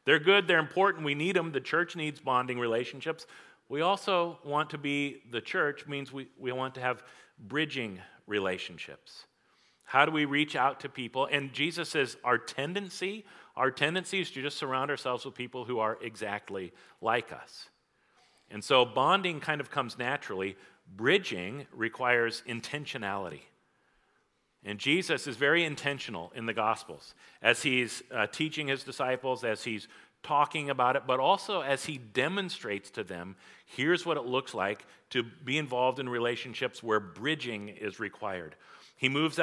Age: 50-69